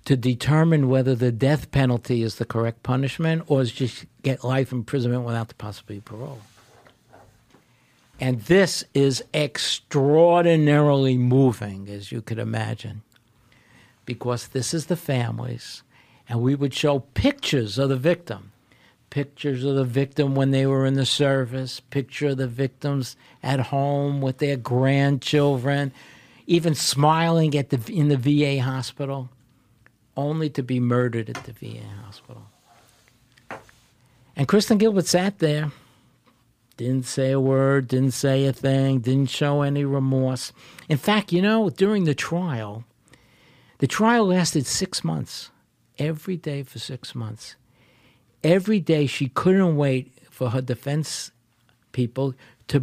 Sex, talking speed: male, 140 wpm